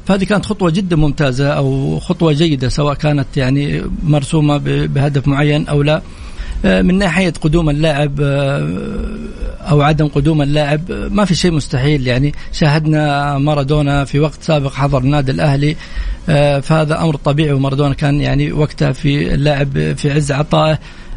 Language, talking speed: Arabic, 140 wpm